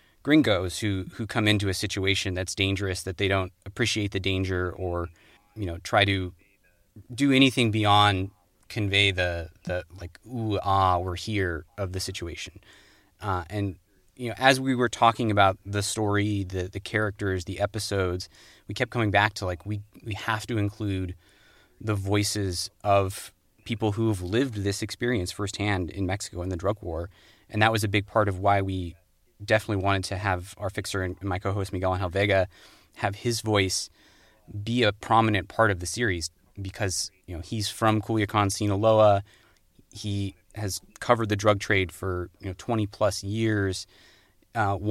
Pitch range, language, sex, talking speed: 95-110 Hz, English, male, 170 wpm